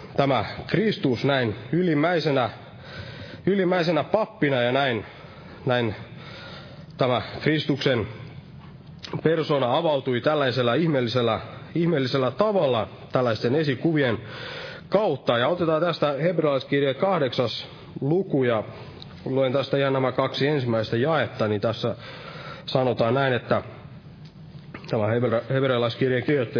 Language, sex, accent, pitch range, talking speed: Finnish, male, native, 120-155 Hz, 95 wpm